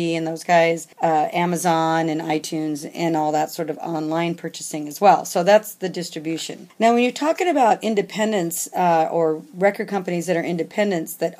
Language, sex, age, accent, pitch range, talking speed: English, female, 40-59, American, 165-205 Hz, 175 wpm